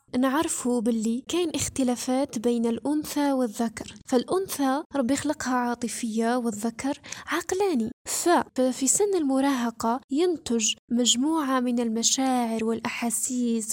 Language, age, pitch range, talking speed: Arabic, 10-29, 240-285 Hz, 90 wpm